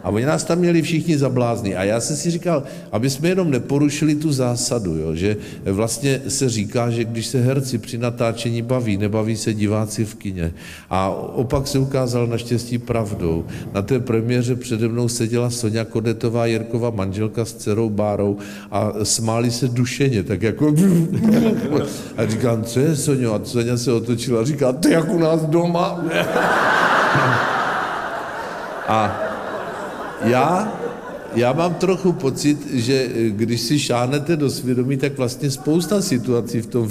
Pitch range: 110-130 Hz